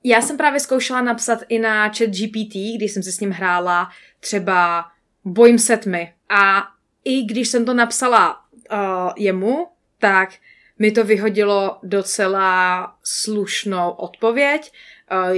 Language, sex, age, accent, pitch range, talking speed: Czech, female, 20-39, native, 185-215 Hz, 135 wpm